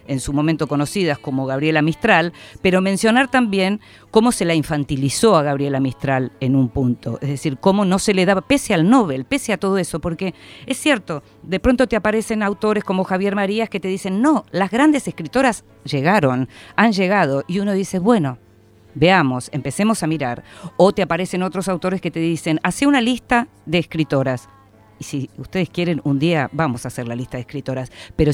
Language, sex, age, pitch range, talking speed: Spanish, female, 50-69, 140-195 Hz, 190 wpm